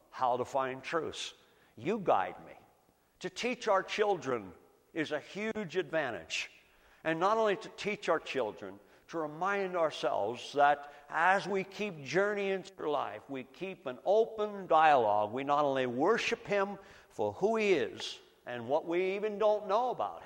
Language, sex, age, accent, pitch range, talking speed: English, male, 60-79, American, 130-205 Hz, 155 wpm